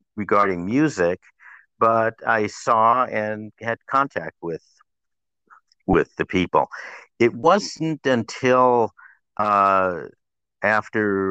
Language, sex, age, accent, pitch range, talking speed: English, male, 60-79, American, 95-115 Hz, 90 wpm